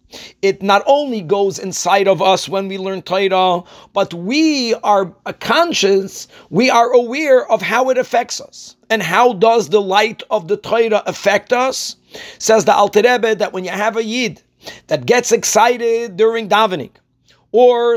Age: 50-69